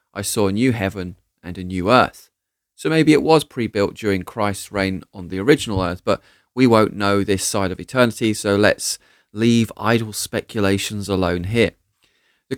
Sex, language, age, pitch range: male, English, 30-49, 95-125 Hz